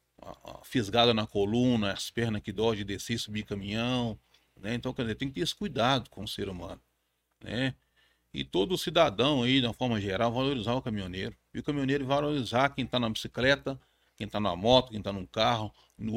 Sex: male